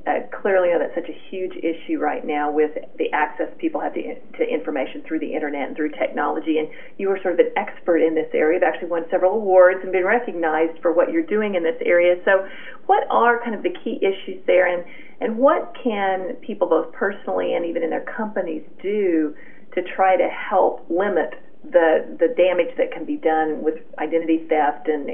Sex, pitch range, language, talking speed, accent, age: female, 160-235 Hz, English, 210 wpm, American, 40-59